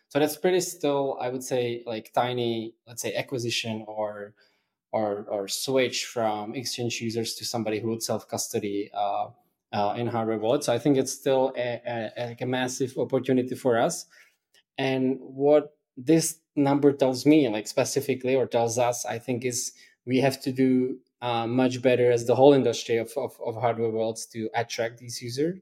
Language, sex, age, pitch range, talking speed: English, male, 20-39, 115-140 Hz, 180 wpm